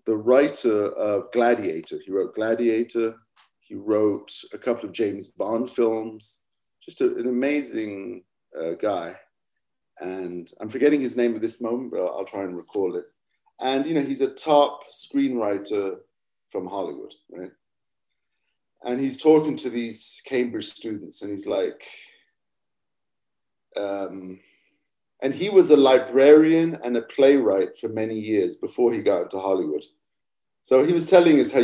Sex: male